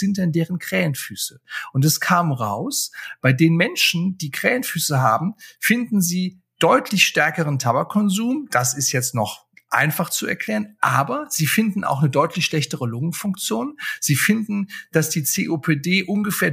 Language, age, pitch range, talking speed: German, 50-69, 140-200 Hz, 145 wpm